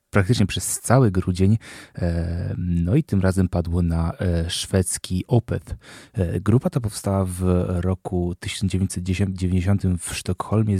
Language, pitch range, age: Polish, 90-105 Hz, 20-39